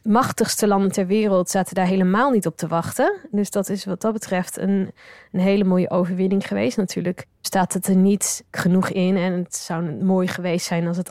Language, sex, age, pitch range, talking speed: Dutch, female, 20-39, 185-210 Hz, 205 wpm